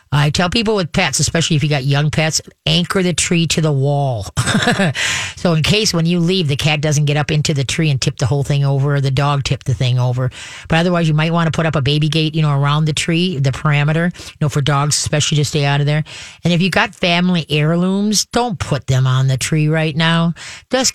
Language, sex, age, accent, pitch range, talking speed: English, female, 40-59, American, 140-170 Hz, 250 wpm